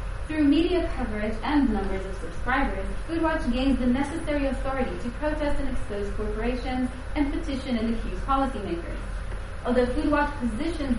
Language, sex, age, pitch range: English, female, 20-39, 215-290 Hz